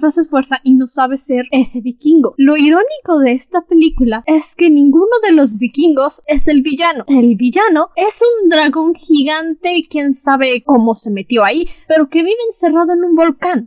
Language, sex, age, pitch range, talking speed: Spanish, female, 10-29, 250-330 Hz, 185 wpm